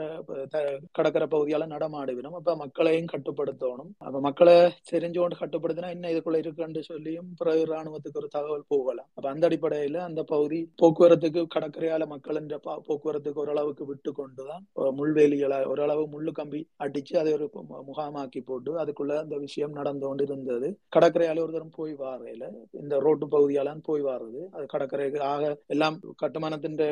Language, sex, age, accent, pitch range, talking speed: Tamil, male, 30-49, native, 140-160 Hz, 70 wpm